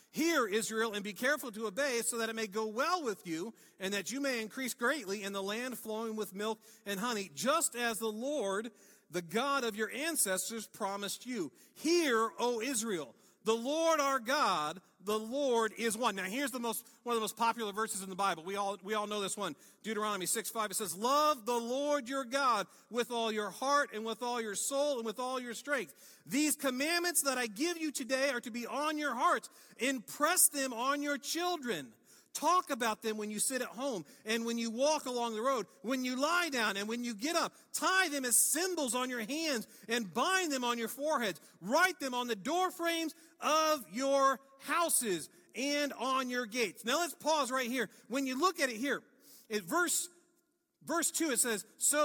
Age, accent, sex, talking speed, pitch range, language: 50-69, American, male, 210 wpm, 220-290 Hz, English